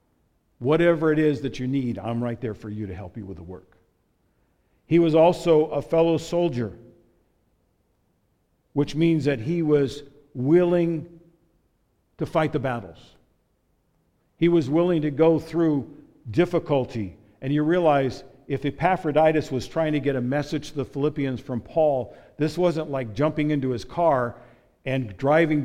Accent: American